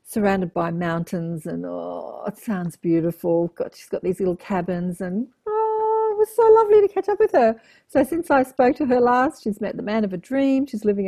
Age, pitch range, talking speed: 50-69, 185-235 Hz, 215 wpm